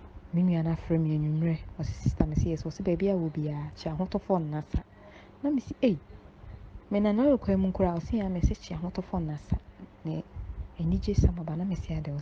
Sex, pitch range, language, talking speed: female, 145-190 Hz, English, 160 wpm